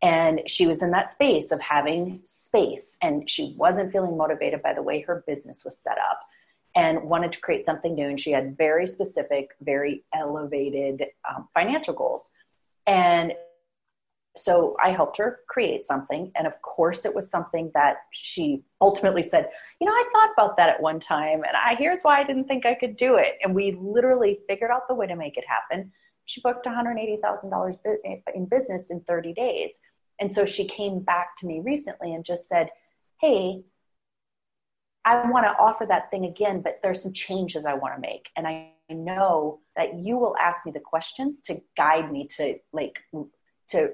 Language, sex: English, female